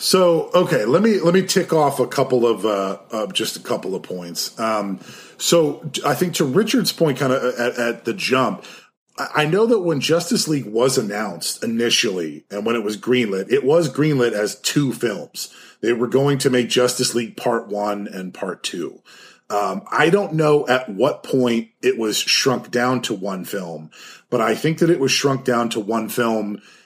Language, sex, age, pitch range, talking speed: English, male, 30-49, 115-140 Hz, 195 wpm